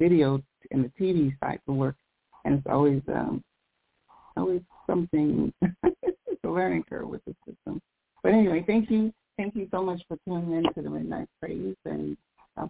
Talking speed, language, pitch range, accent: 165 wpm, English, 140-165 Hz, American